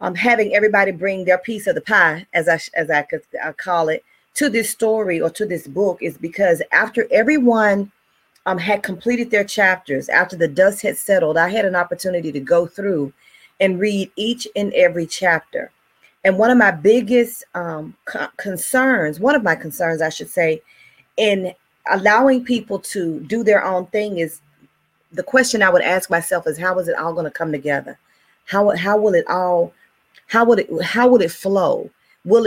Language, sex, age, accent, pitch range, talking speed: English, female, 30-49, American, 170-215 Hz, 185 wpm